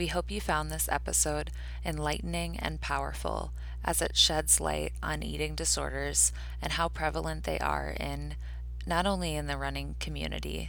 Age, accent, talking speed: 20-39, American, 155 wpm